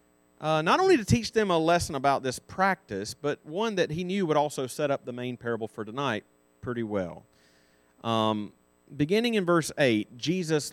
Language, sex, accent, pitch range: English, male, American, 95-150 Hz